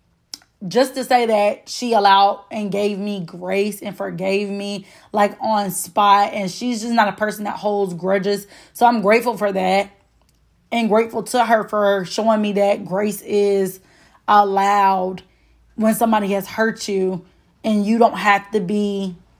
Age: 20-39